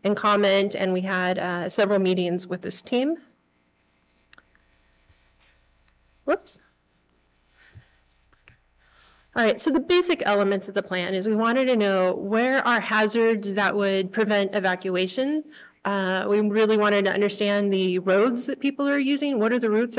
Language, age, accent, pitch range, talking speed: English, 30-49, American, 180-235 Hz, 145 wpm